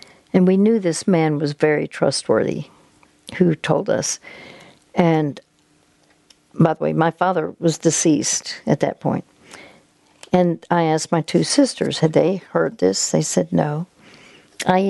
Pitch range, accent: 150-185 Hz, American